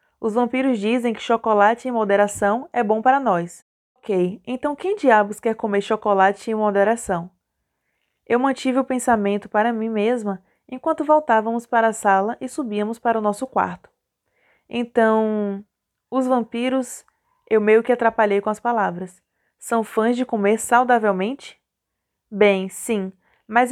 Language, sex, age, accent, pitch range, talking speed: Portuguese, female, 20-39, Brazilian, 205-245 Hz, 140 wpm